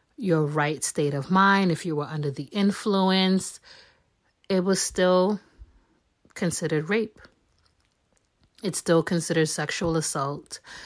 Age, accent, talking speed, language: 30-49, American, 115 wpm, English